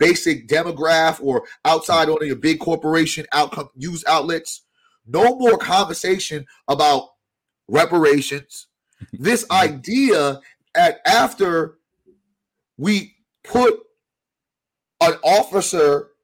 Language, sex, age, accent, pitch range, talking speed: English, male, 30-49, American, 155-225 Hz, 90 wpm